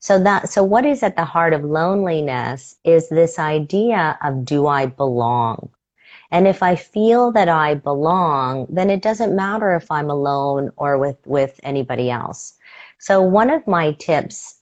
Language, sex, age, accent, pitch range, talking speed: English, female, 40-59, American, 150-220 Hz, 170 wpm